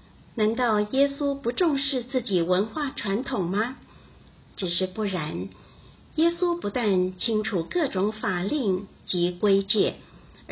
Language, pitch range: Chinese, 185-240 Hz